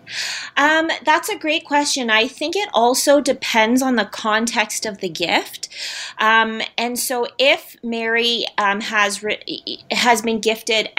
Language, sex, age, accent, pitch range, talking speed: English, female, 20-39, American, 195-240 Hz, 140 wpm